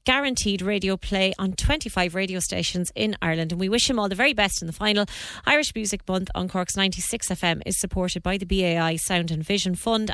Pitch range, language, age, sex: 190-225 Hz, English, 30-49, female